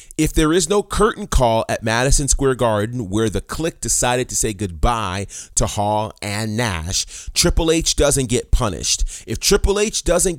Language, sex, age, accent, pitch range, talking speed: English, male, 30-49, American, 95-140 Hz, 175 wpm